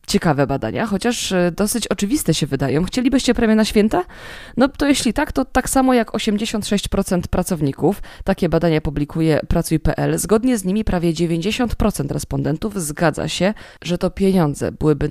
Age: 20-39